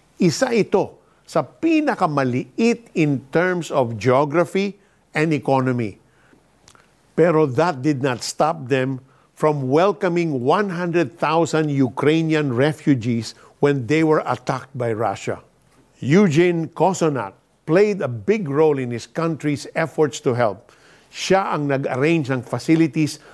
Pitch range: 130-170 Hz